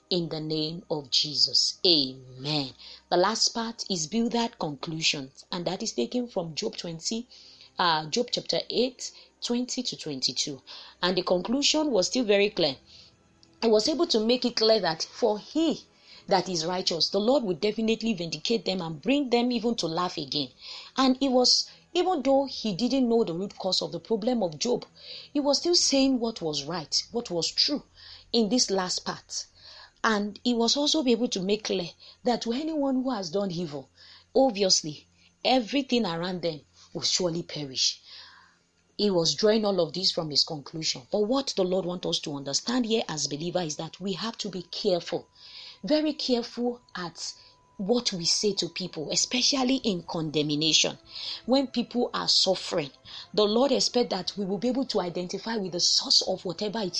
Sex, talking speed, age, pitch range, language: female, 180 wpm, 30-49, 170-245 Hz, English